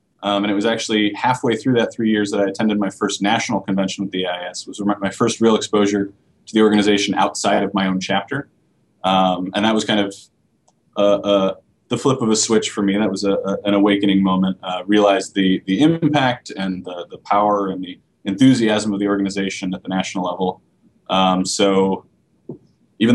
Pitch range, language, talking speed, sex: 95-110 Hz, English, 200 wpm, male